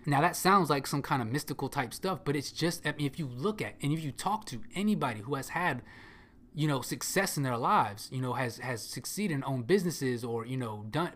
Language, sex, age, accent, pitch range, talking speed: English, male, 20-39, American, 125-155 Hz, 245 wpm